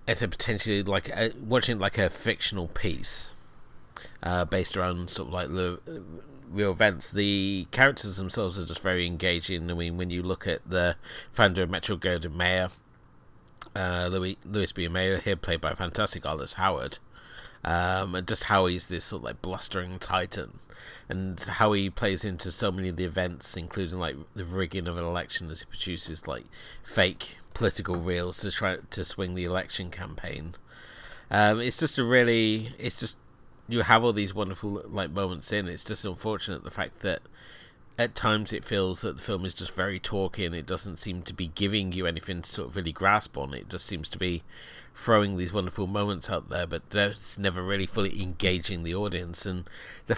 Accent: British